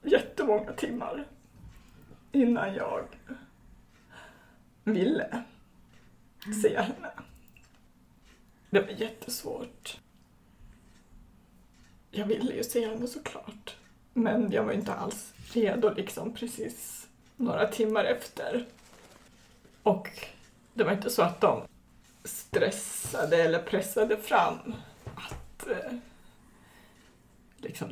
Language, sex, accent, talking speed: Swedish, female, native, 90 wpm